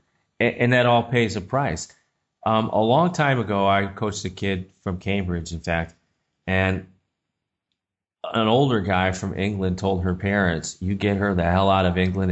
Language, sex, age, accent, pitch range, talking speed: English, male, 30-49, American, 90-110 Hz, 175 wpm